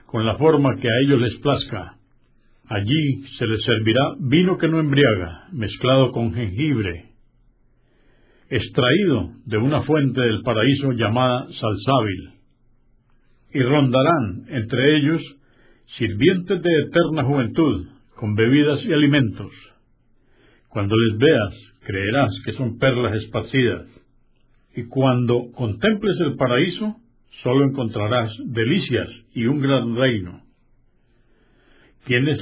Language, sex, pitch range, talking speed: Spanish, male, 115-145 Hz, 110 wpm